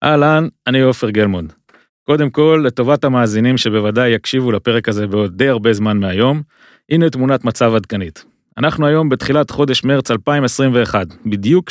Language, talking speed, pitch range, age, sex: Hebrew, 145 wpm, 110-145 Hz, 30-49, male